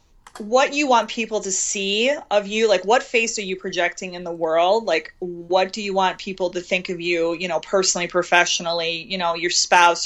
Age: 30-49